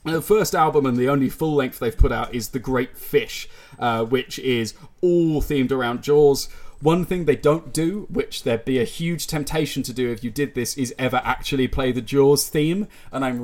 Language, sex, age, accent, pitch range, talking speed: English, male, 20-39, British, 125-155 Hz, 215 wpm